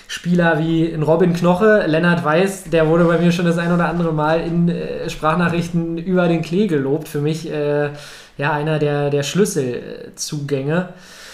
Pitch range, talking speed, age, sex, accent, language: 150-170 Hz, 165 wpm, 20-39, male, German, German